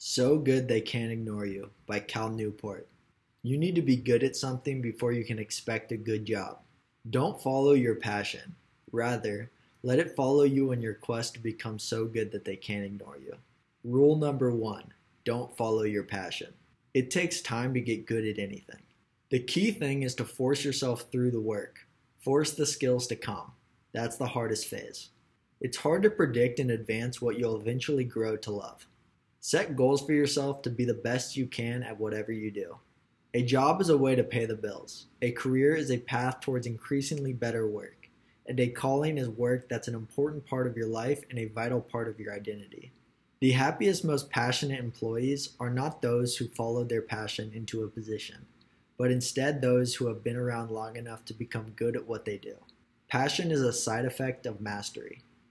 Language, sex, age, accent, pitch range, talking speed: English, male, 20-39, American, 115-135 Hz, 195 wpm